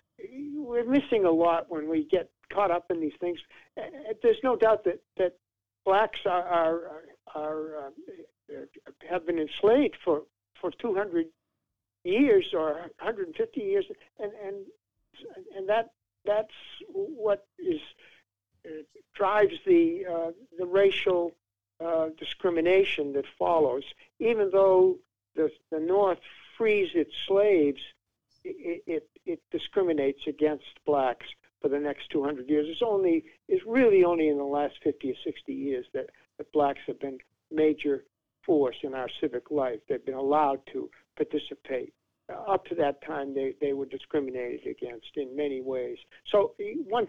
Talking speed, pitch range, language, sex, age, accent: 140 wpm, 145-240 Hz, English, male, 60-79, American